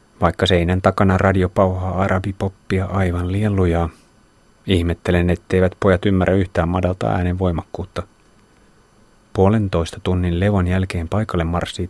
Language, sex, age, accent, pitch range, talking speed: Finnish, male, 30-49, native, 90-105 Hz, 105 wpm